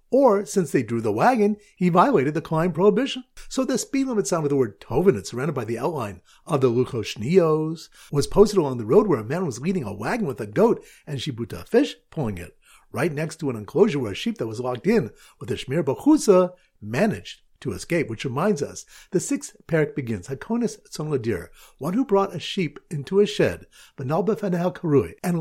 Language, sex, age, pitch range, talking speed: English, male, 50-69, 135-205 Hz, 200 wpm